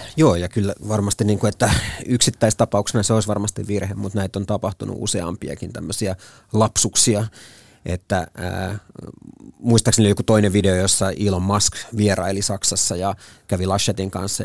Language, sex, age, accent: Finnish, male, 30-49, native